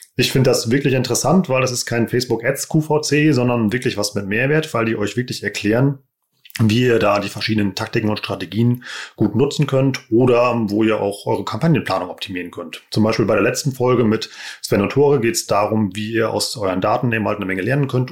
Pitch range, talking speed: 105-135 Hz, 210 wpm